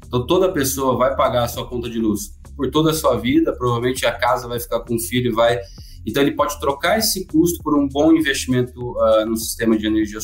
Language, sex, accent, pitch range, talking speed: Portuguese, male, Brazilian, 105-130 Hz, 235 wpm